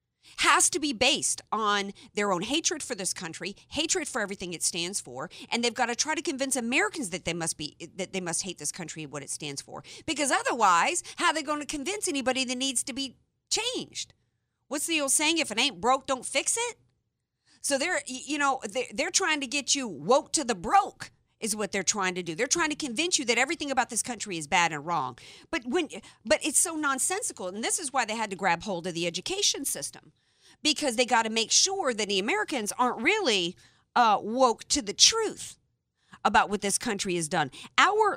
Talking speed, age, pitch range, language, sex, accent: 220 wpm, 50-69, 195-300 Hz, English, female, American